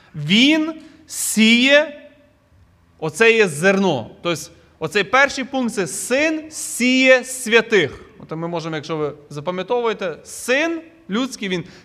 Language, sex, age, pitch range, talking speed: Ukrainian, male, 20-39, 175-230 Hz, 110 wpm